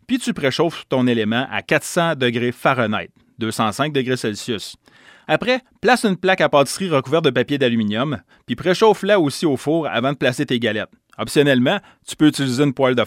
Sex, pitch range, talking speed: male, 120-160 Hz, 180 wpm